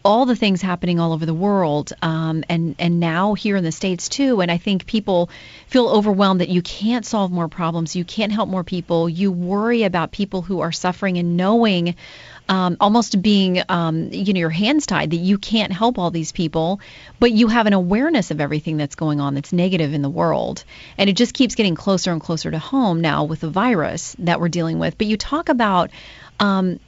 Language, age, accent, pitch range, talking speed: English, 30-49, American, 175-215 Hz, 215 wpm